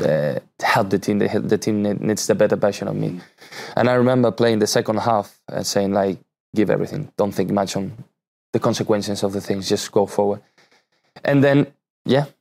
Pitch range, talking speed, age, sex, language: 100-110 Hz, 200 wpm, 20-39, male, English